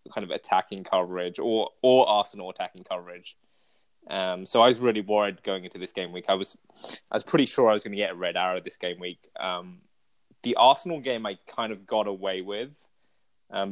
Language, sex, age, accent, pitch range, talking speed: English, male, 20-39, British, 90-110 Hz, 210 wpm